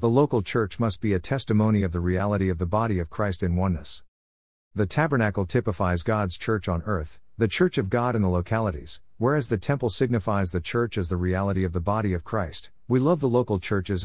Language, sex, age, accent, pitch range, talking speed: English, male, 50-69, American, 90-115 Hz, 215 wpm